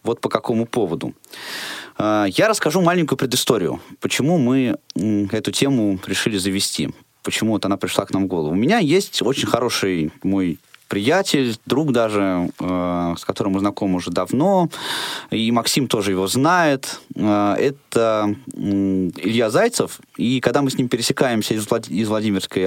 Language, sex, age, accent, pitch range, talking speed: Russian, male, 20-39, native, 100-140 Hz, 140 wpm